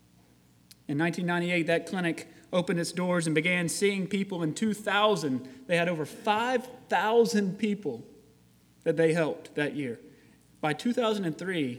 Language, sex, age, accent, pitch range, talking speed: English, male, 30-49, American, 145-215 Hz, 125 wpm